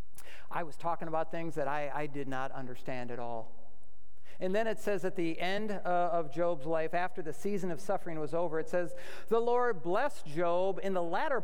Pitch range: 130-185 Hz